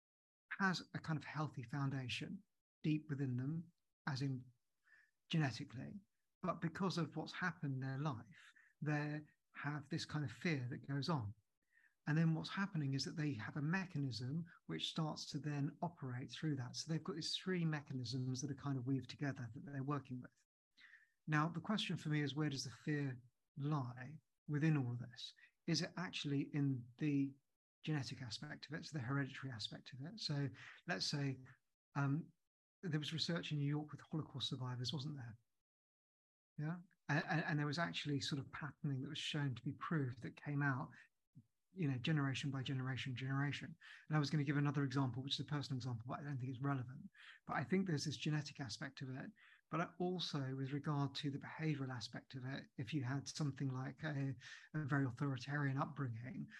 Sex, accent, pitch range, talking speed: male, British, 135-155 Hz, 190 wpm